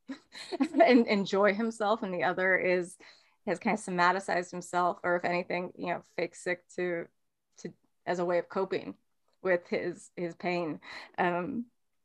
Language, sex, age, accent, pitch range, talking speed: English, female, 20-39, American, 175-210 Hz, 155 wpm